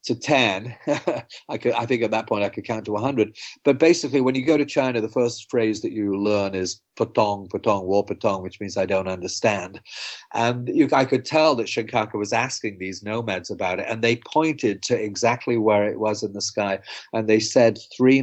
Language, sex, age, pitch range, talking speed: English, male, 40-59, 105-135 Hz, 215 wpm